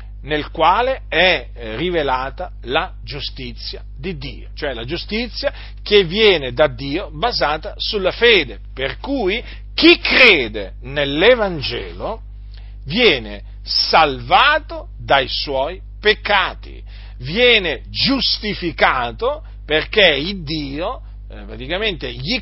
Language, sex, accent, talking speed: Italian, male, native, 100 wpm